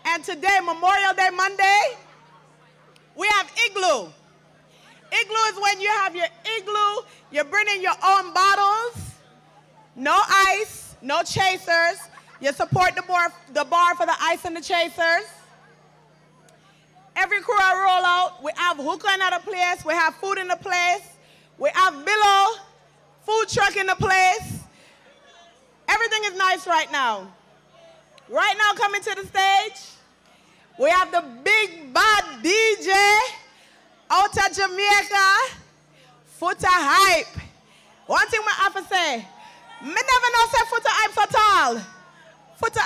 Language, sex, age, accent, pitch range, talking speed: English, female, 30-49, American, 350-415 Hz, 135 wpm